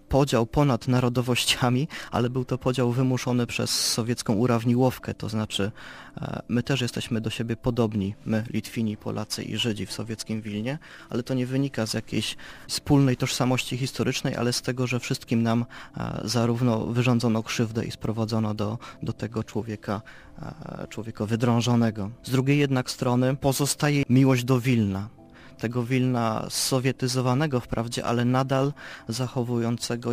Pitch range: 110-125 Hz